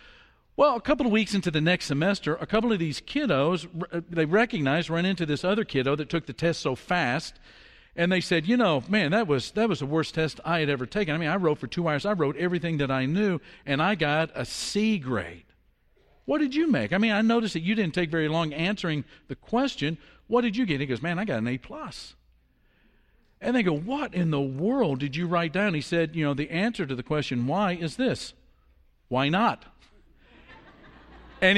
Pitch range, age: 145-205 Hz, 50-69